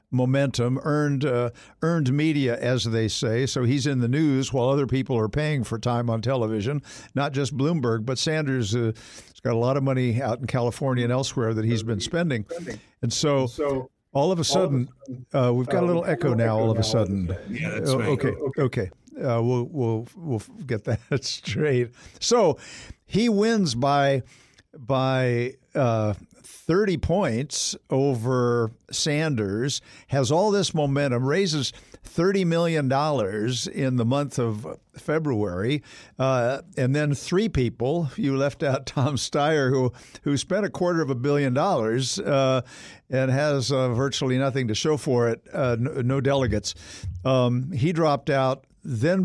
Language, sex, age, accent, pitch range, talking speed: English, male, 60-79, American, 120-145 Hz, 155 wpm